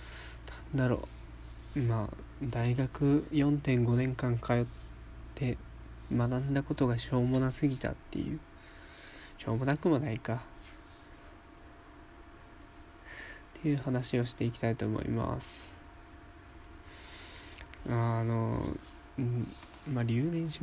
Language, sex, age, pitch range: Japanese, male, 20-39, 95-140 Hz